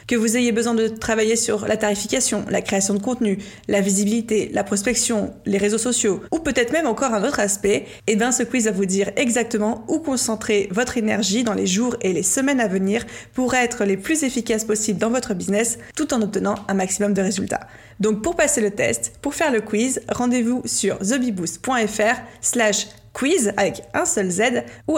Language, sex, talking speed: French, female, 195 wpm